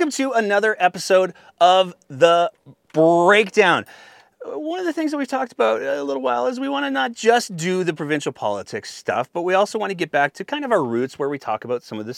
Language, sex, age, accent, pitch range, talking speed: English, male, 30-49, American, 125-180 Hz, 235 wpm